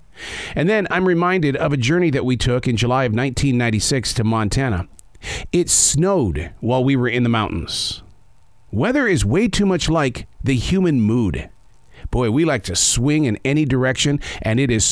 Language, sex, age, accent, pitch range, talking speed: English, male, 50-69, American, 110-150 Hz, 175 wpm